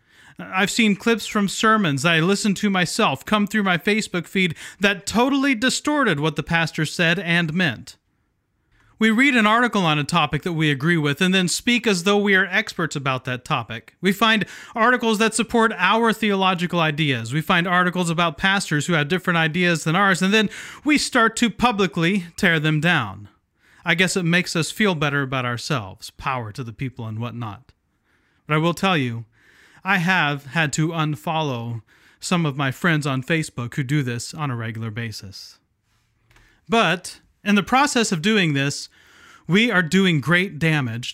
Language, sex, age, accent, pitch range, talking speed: English, male, 30-49, American, 140-195 Hz, 180 wpm